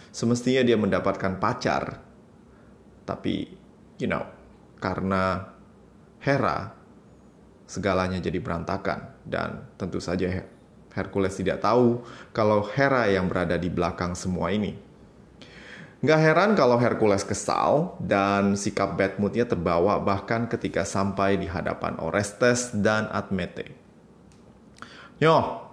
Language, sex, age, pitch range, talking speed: Indonesian, male, 20-39, 95-120 Hz, 105 wpm